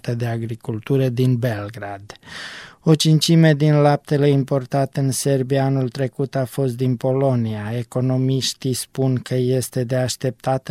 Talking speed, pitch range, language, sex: 130 wpm, 125-140 Hz, Romanian, male